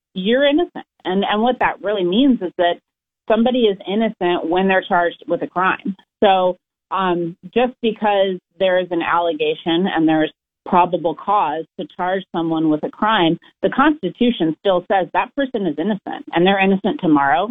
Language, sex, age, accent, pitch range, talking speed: English, female, 30-49, American, 165-215 Hz, 170 wpm